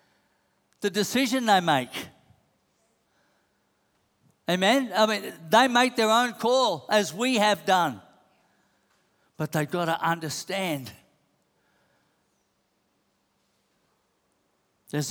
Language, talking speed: English, 85 wpm